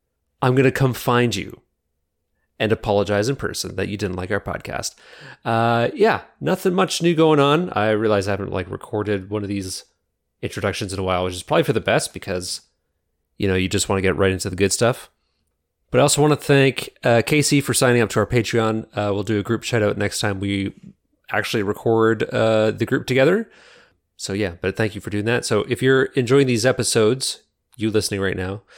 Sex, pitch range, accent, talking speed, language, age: male, 95-120 Hz, American, 215 wpm, English, 30-49